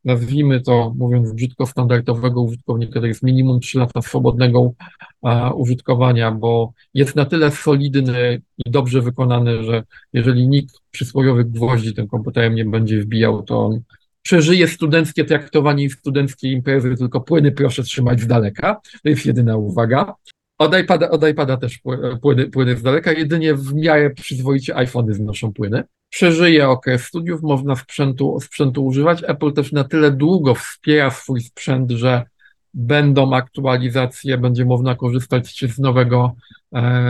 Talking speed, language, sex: 145 wpm, Polish, male